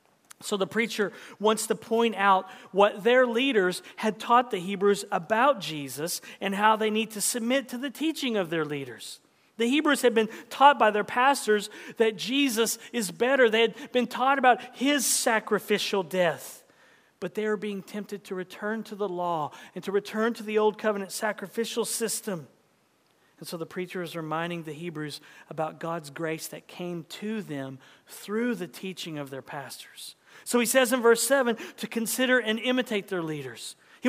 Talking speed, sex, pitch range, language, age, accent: 180 wpm, male, 170-240 Hz, English, 40-59, American